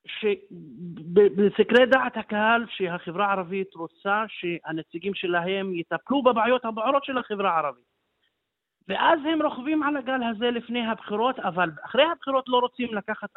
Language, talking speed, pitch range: Hebrew, 125 wpm, 185-255 Hz